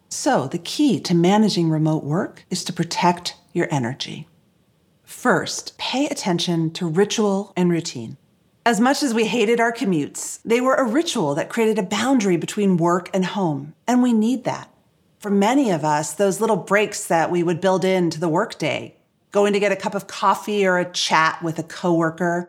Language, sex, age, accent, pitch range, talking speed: English, female, 40-59, American, 170-220 Hz, 185 wpm